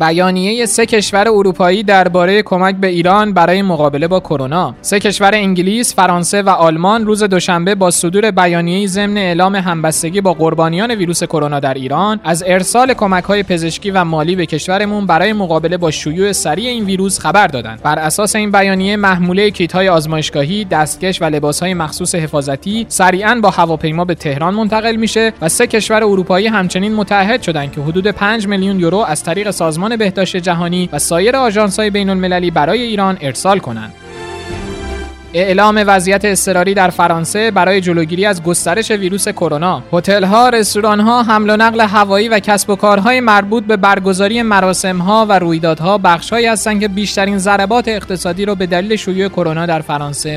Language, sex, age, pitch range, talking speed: Persian, male, 20-39, 165-205 Hz, 160 wpm